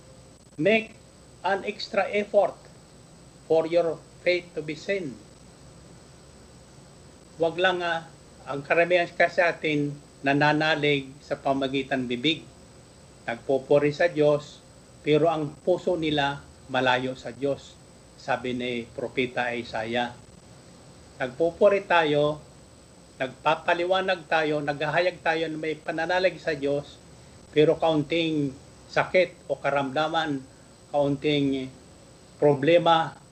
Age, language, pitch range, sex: 40-59, Filipino, 130-165 Hz, male